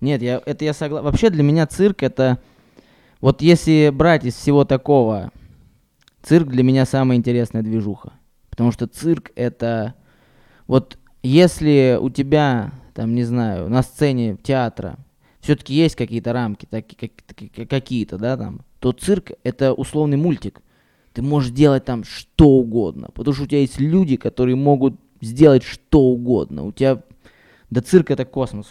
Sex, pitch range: male, 120-145 Hz